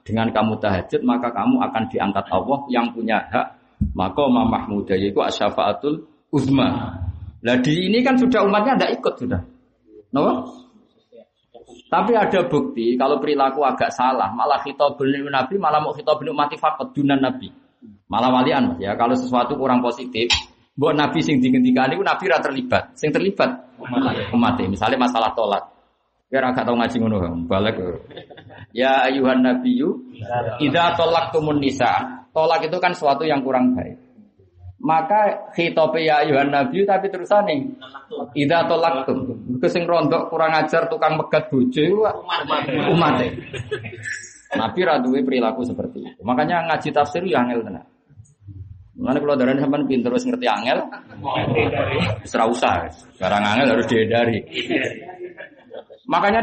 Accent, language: native, Indonesian